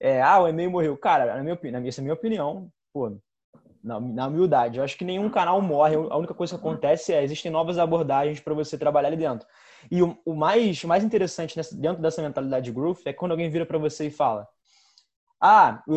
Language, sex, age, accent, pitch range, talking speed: Portuguese, male, 20-39, Brazilian, 140-170 Hz, 235 wpm